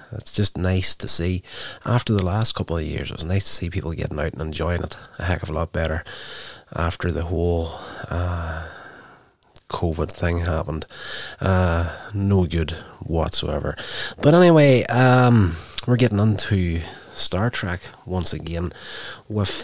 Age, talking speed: 30-49, 155 wpm